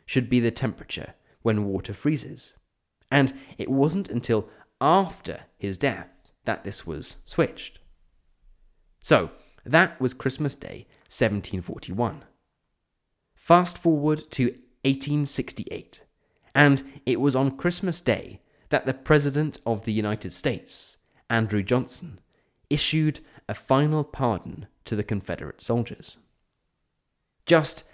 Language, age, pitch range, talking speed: English, 20-39, 95-130 Hz, 110 wpm